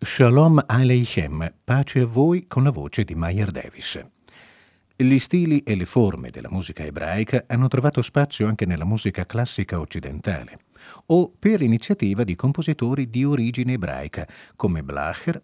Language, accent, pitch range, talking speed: Italian, native, 95-150 Hz, 145 wpm